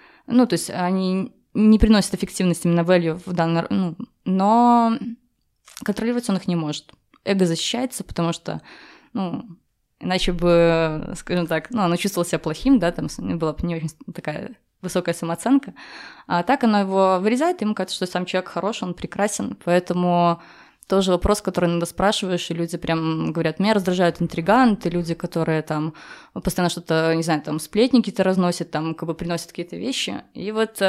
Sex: female